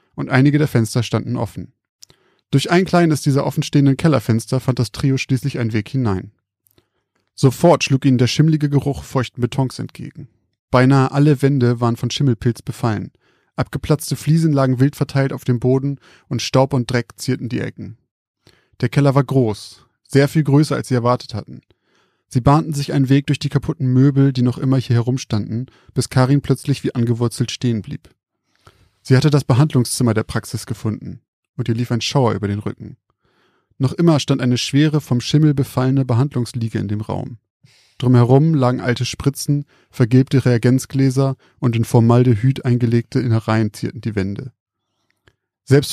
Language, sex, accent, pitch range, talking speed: German, male, German, 115-140 Hz, 160 wpm